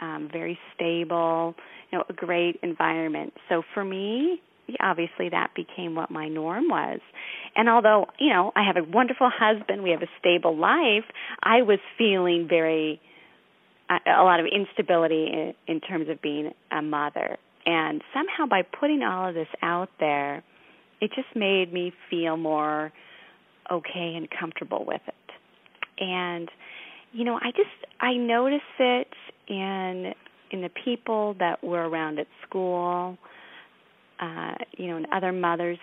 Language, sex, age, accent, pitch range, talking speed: English, female, 30-49, American, 165-220 Hz, 150 wpm